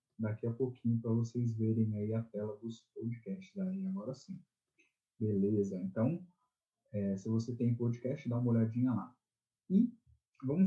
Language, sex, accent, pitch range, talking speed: Portuguese, male, Brazilian, 115-140 Hz, 140 wpm